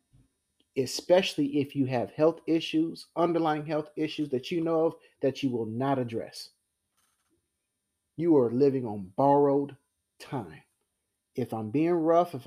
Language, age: English, 30-49